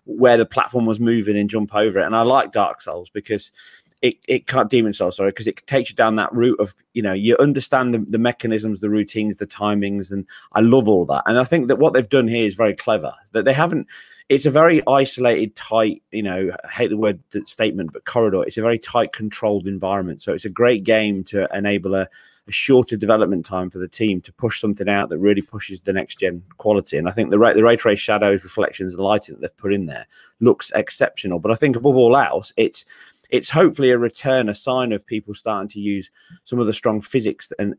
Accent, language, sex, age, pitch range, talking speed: British, English, male, 30-49, 100-115 Hz, 235 wpm